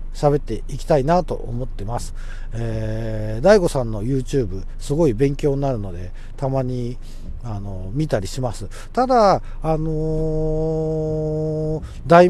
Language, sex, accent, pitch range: Japanese, male, native, 120-190 Hz